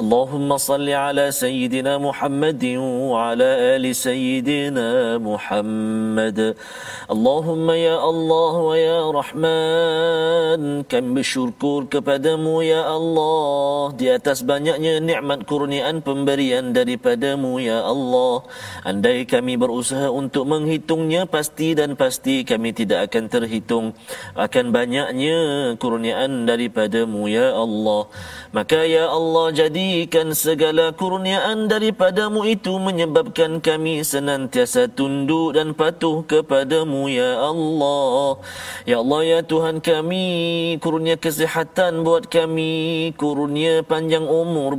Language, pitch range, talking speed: Malayalam, 135-185 Hz, 85 wpm